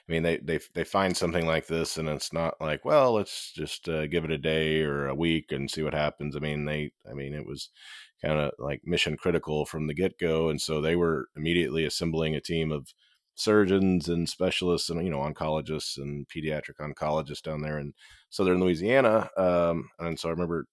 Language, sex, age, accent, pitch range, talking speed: English, male, 30-49, American, 75-85 Hz, 210 wpm